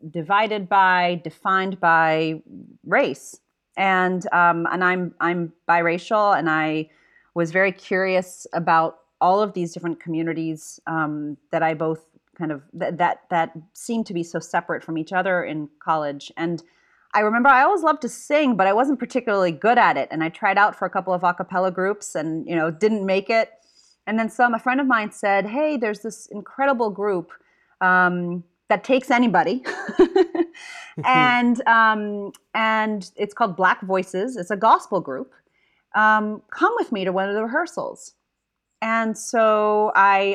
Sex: female